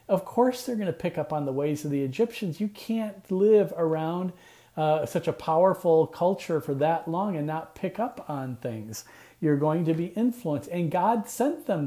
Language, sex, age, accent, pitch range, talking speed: English, male, 40-59, American, 140-175 Hz, 200 wpm